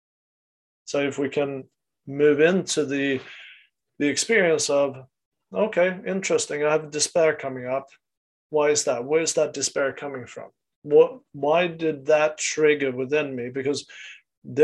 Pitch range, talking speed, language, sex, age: 135-155 Hz, 140 wpm, English, male, 30-49